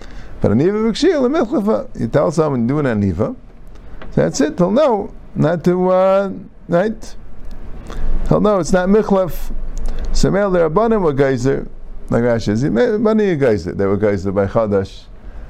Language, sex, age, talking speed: English, male, 50-69, 165 wpm